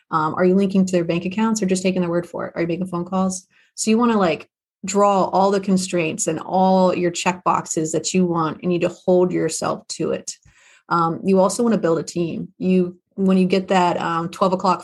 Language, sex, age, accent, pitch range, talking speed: English, female, 30-49, American, 175-195 Hz, 245 wpm